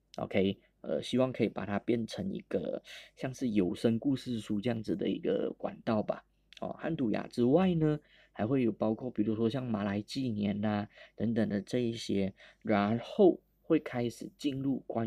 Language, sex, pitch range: Chinese, male, 105-140 Hz